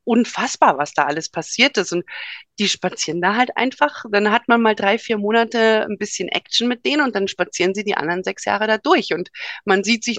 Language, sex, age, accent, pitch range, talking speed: German, female, 30-49, German, 175-230 Hz, 225 wpm